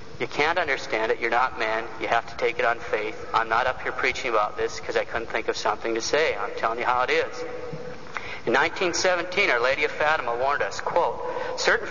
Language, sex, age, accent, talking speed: English, male, 50-69, American, 225 wpm